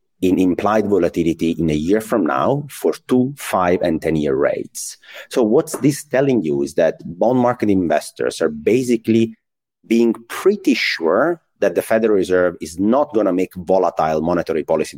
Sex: male